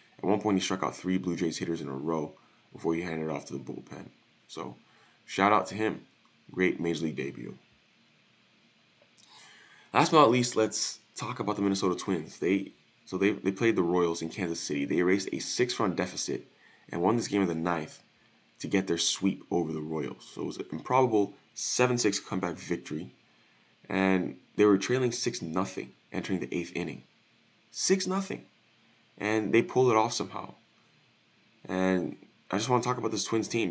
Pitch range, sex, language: 85-105 Hz, male, English